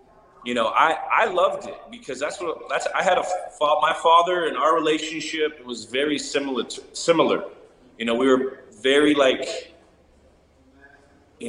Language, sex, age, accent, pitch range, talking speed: English, male, 30-49, American, 120-150 Hz, 160 wpm